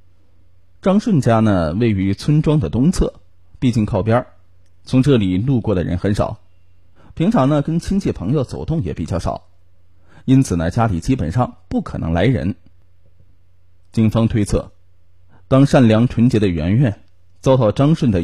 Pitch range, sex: 90-130 Hz, male